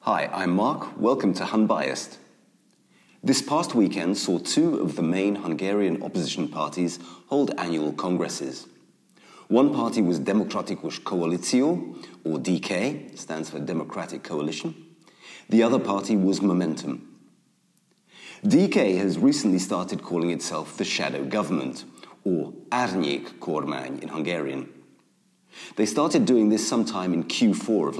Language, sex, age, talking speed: English, male, 40-59, 125 wpm